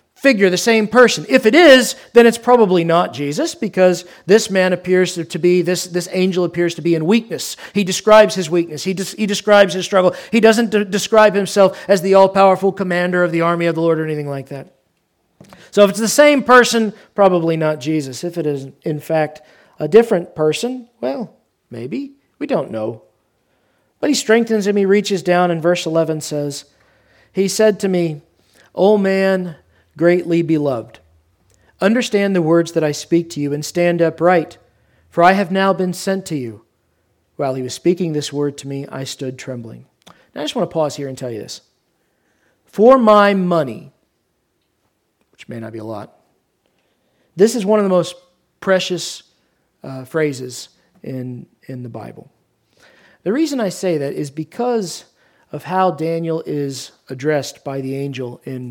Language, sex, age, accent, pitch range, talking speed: English, male, 40-59, American, 145-200 Hz, 180 wpm